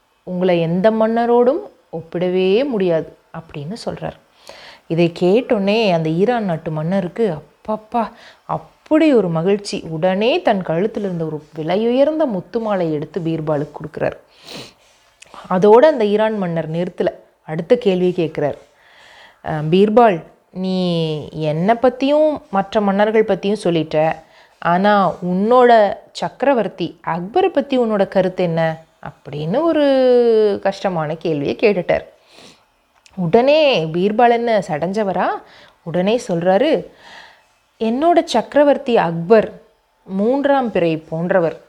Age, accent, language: 30-49, native, Tamil